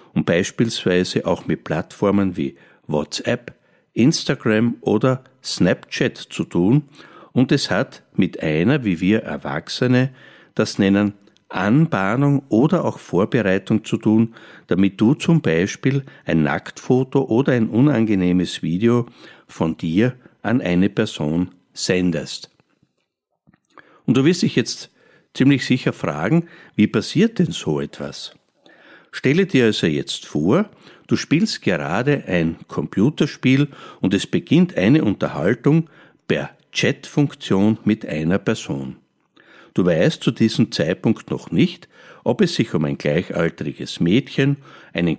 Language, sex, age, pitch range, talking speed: German, male, 50-69, 95-140 Hz, 120 wpm